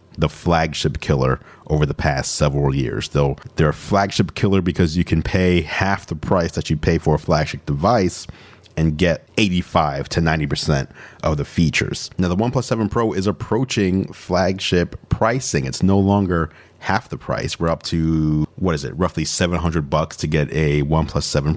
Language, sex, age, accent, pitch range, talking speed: English, male, 40-59, American, 80-95 Hz, 180 wpm